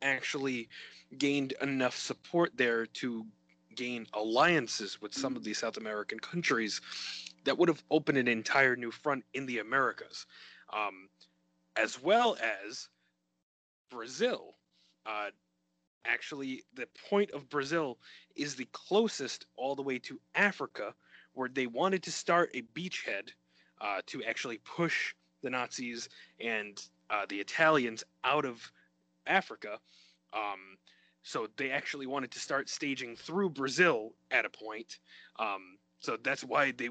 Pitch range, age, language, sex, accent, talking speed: 110-150 Hz, 20-39, English, male, American, 135 wpm